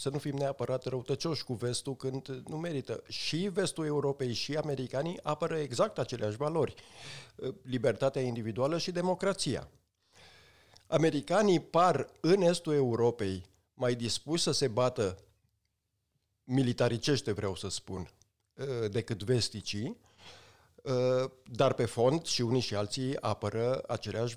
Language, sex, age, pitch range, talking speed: Romanian, male, 50-69, 110-150 Hz, 120 wpm